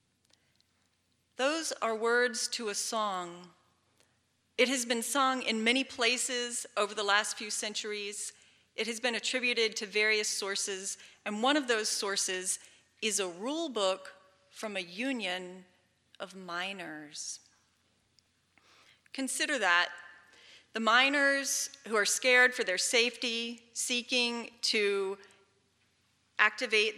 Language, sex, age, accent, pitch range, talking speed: English, female, 40-59, American, 185-240 Hz, 115 wpm